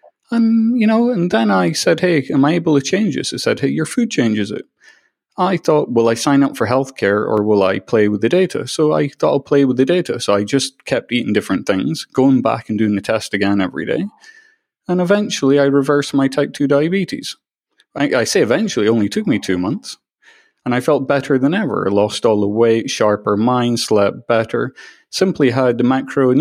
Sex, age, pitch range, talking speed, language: male, 30-49, 105-150 Hz, 225 wpm, English